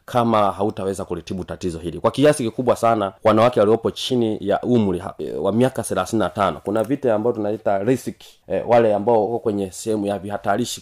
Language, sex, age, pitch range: Swahili, male, 30-49, 95-115 Hz